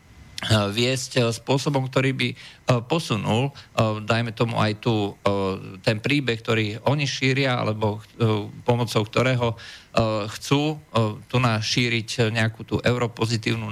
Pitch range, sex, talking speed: 110-135 Hz, male, 105 wpm